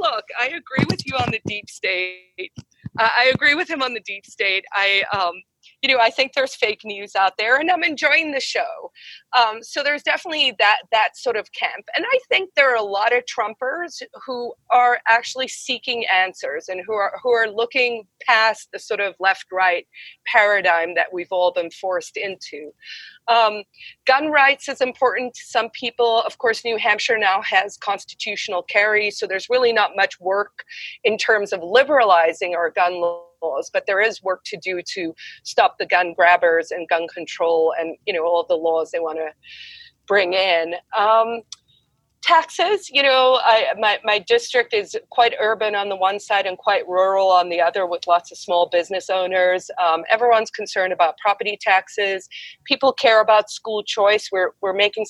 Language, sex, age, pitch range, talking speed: English, female, 40-59, 185-255 Hz, 185 wpm